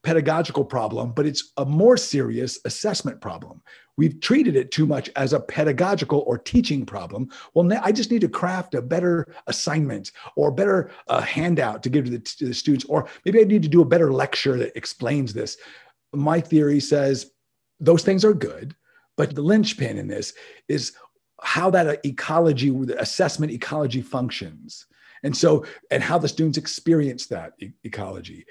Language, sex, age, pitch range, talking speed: English, male, 50-69, 130-165 Hz, 170 wpm